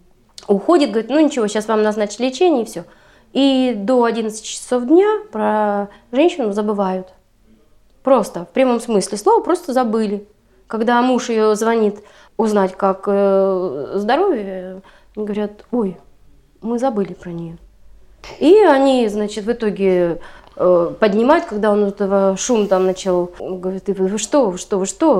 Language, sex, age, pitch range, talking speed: Russian, female, 20-39, 185-235 Hz, 140 wpm